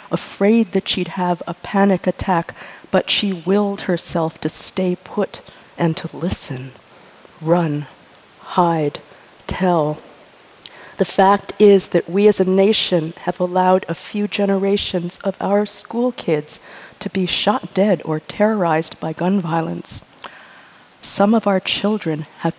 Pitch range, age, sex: 160-195 Hz, 40-59, female